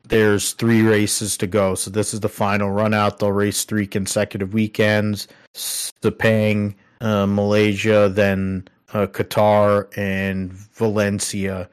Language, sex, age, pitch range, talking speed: English, male, 30-49, 100-110 Hz, 125 wpm